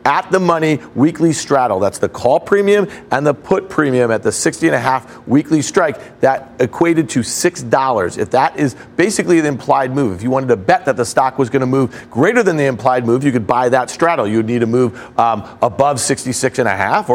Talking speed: 205 wpm